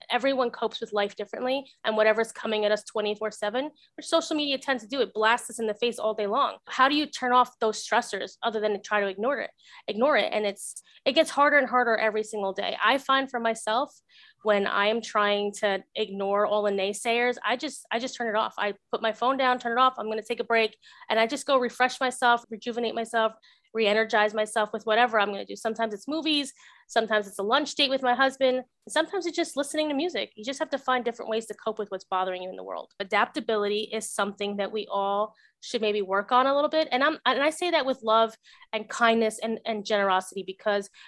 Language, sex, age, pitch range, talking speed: English, female, 20-39, 210-255 Hz, 235 wpm